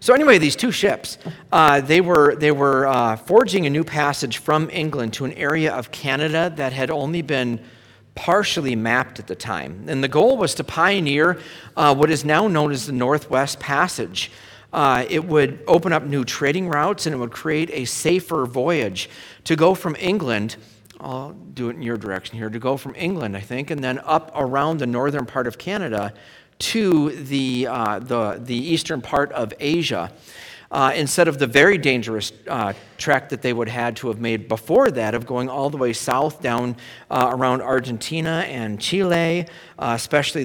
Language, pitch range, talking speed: English, 120-155 Hz, 190 wpm